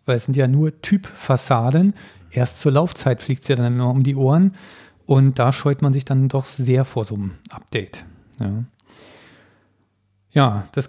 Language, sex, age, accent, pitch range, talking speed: German, male, 40-59, German, 130-150 Hz, 175 wpm